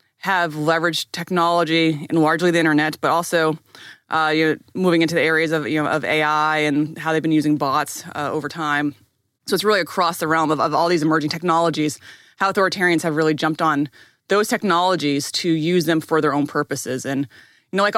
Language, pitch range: English, 150-175 Hz